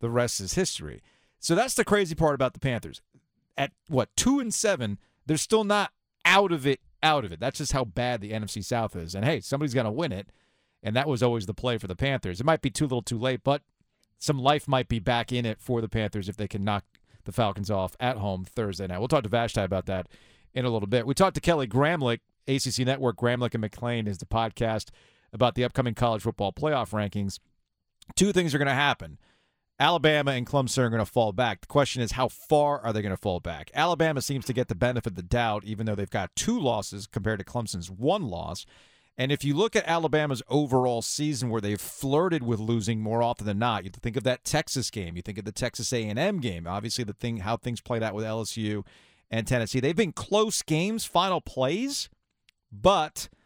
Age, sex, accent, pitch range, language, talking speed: 40-59, male, American, 110-140 Hz, English, 225 wpm